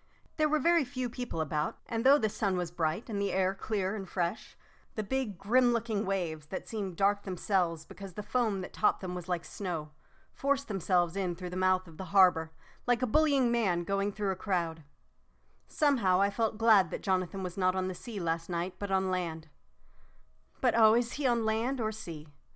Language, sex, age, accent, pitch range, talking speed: English, female, 40-59, American, 180-230 Hz, 200 wpm